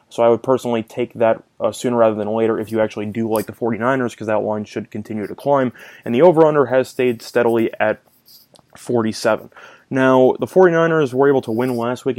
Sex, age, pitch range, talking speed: male, 20-39, 115-140 Hz, 205 wpm